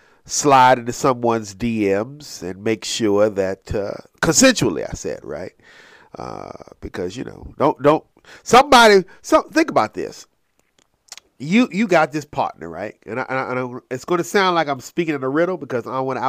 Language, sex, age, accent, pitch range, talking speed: English, male, 40-59, American, 115-170 Hz, 190 wpm